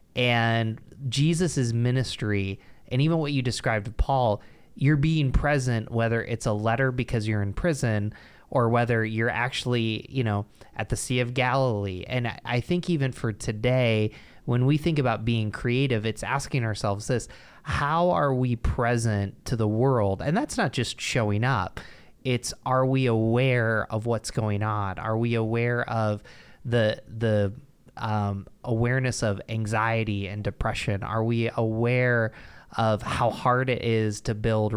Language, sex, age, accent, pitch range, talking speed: English, male, 20-39, American, 110-130 Hz, 155 wpm